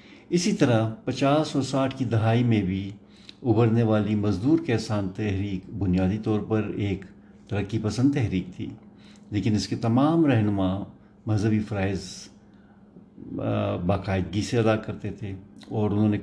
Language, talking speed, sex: Urdu, 135 wpm, male